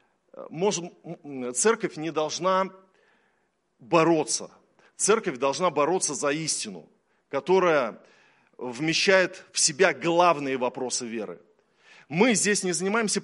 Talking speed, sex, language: 90 wpm, male, Russian